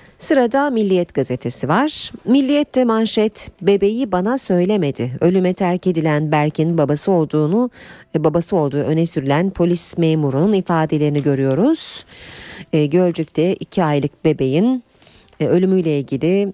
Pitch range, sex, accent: 145-200 Hz, female, native